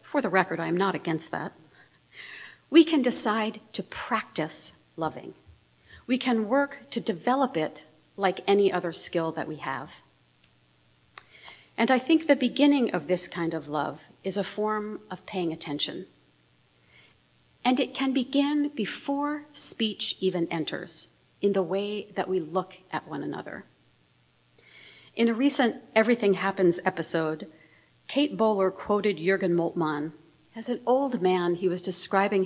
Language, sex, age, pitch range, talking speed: English, female, 50-69, 160-215 Hz, 145 wpm